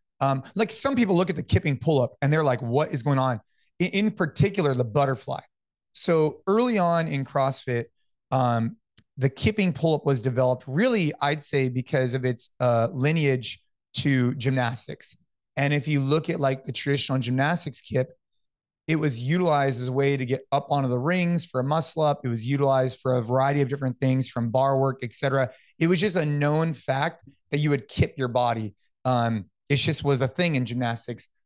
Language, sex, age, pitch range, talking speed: English, male, 30-49, 125-155 Hz, 195 wpm